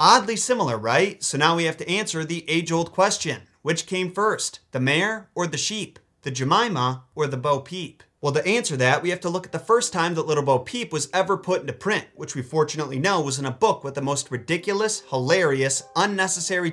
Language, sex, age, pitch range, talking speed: English, male, 30-49, 135-180 Hz, 220 wpm